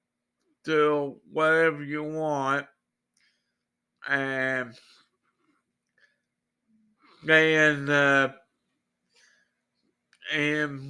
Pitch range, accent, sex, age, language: 130-165 Hz, American, male, 50-69, English